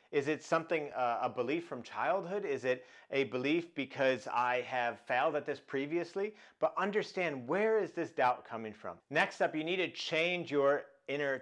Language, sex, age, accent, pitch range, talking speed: English, male, 40-59, American, 135-175 Hz, 185 wpm